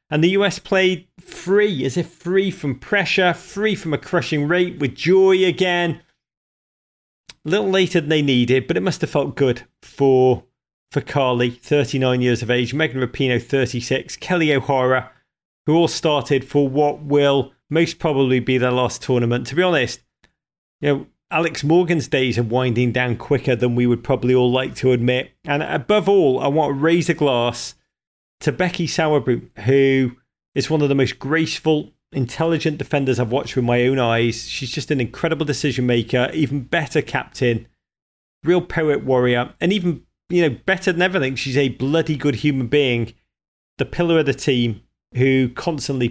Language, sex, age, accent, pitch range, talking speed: English, male, 40-59, British, 125-160 Hz, 175 wpm